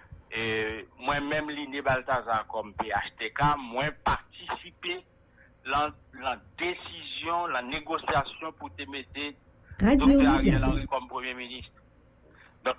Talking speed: 100 wpm